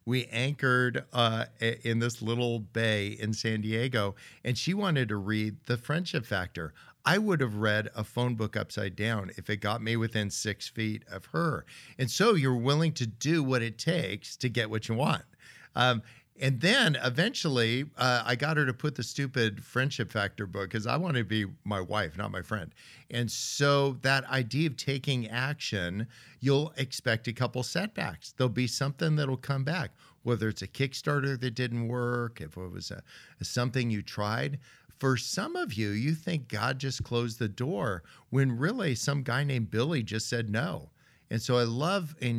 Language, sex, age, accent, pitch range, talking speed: English, male, 50-69, American, 115-145 Hz, 185 wpm